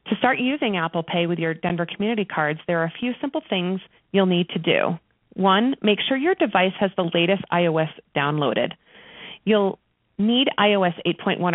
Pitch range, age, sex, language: 170-230 Hz, 30-49, female, English